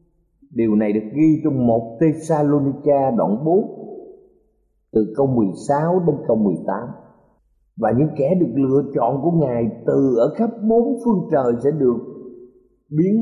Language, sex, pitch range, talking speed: Vietnamese, male, 110-165 Hz, 145 wpm